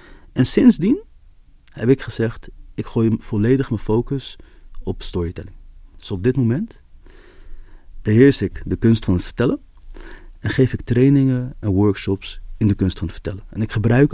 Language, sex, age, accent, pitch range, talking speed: Dutch, male, 40-59, Dutch, 95-125 Hz, 160 wpm